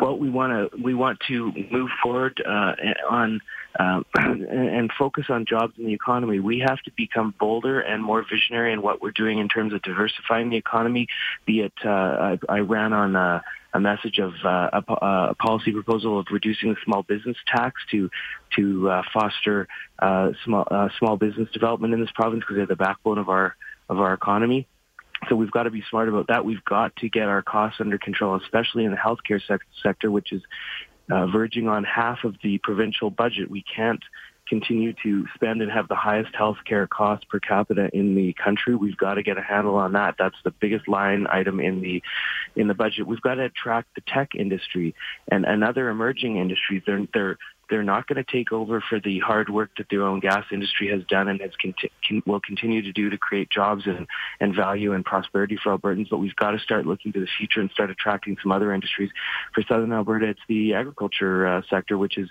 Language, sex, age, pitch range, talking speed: English, male, 30-49, 100-115 Hz, 210 wpm